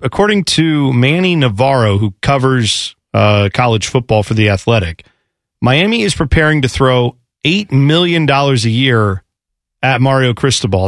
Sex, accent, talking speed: male, American, 140 wpm